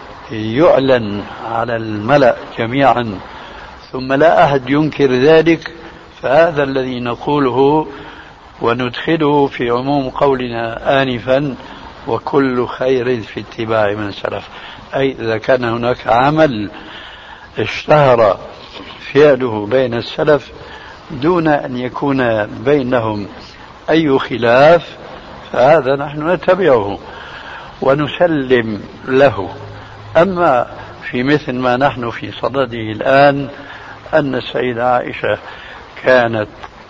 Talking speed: 90 wpm